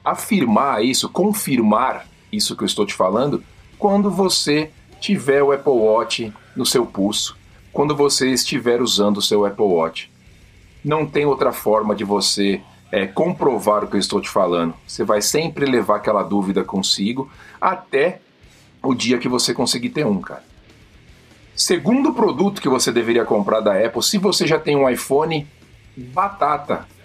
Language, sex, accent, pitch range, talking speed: Portuguese, male, Brazilian, 100-155 Hz, 155 wpm